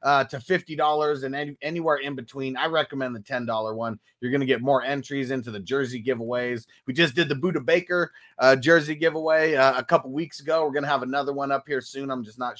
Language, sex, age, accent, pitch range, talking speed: English, male, 30-49, American, 130-170 Hz, 235 wpm